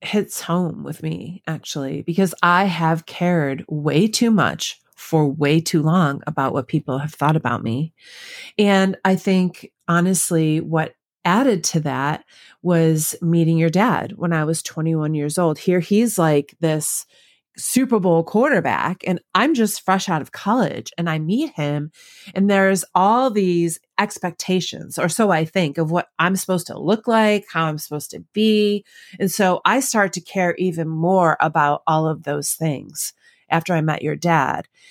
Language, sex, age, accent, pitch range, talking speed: English, female, 30-49, American, 160-200 Hz, 170 wpm